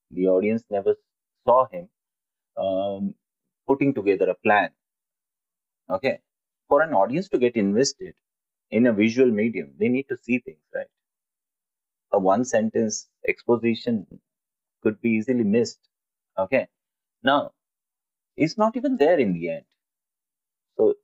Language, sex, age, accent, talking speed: English, male, 30-49, Indian, 130 wpm